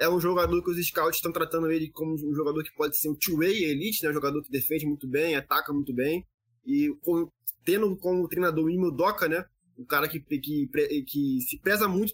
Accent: Brazilian